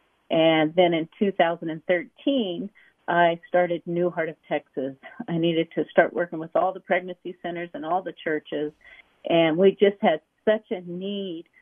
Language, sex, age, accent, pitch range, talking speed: English, female, 50-69, American, 170-215 Hz, 160 wpm